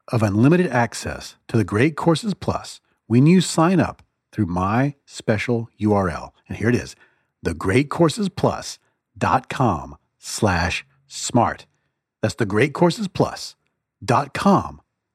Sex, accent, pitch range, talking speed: male, American, 110-150 Hz, 100 wpm